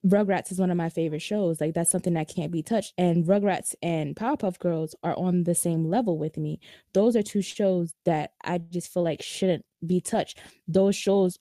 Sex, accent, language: female, American, English